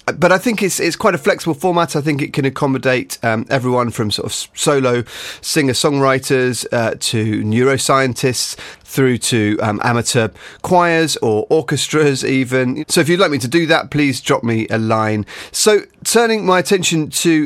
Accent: British